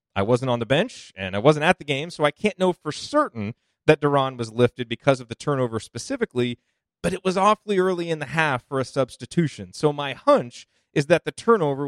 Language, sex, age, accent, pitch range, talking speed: English, male, 30-49, American, 140-205 Hz, 220 wpm